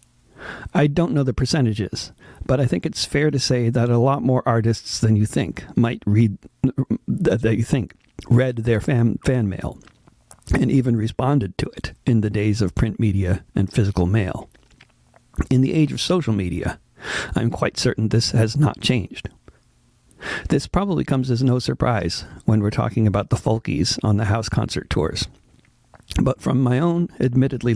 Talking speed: 175 wpm